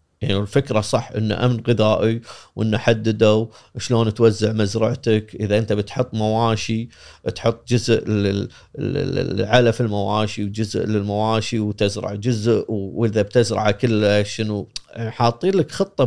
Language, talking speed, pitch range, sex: Arabic, 110 wpm, 105-130 Hz, male